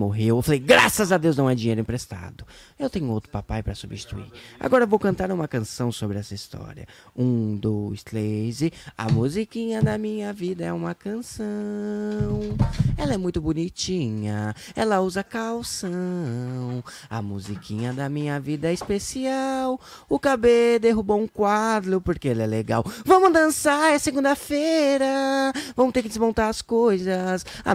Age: 20-39